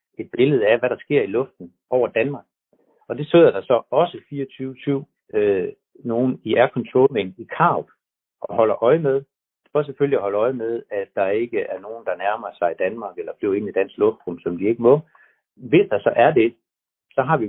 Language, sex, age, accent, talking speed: Danish, male, 60-79, native, 215 wpm